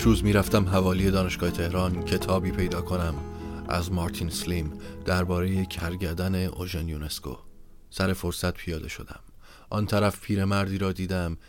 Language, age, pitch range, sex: Persian, 30-49, 85-100 Hz, male